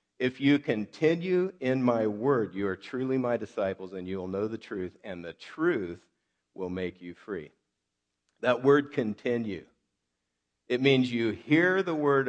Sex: male